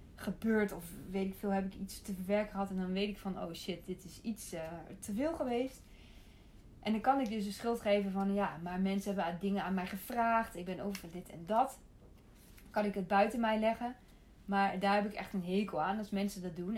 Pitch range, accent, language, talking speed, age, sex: 195-220 Hz, Dutch, Dutch, 235 wpm, 20-39, female